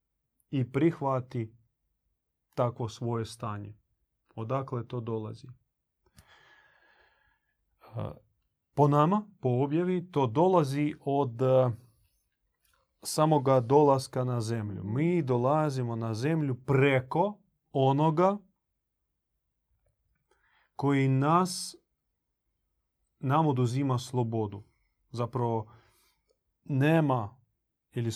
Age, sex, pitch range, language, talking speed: 30-49, male, 115-155 Hz, Croatian, 70 wpm